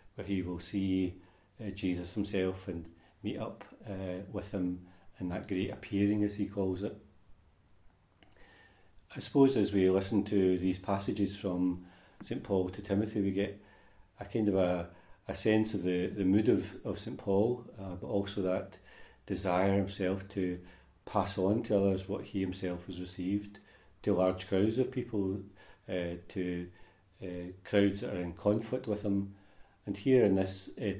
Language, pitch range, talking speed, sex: English, 90-100 Hz, 165 wpm, male